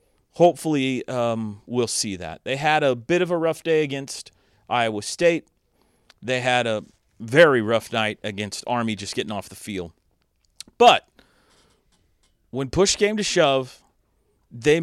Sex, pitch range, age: male, 115-155 Hz, 30-49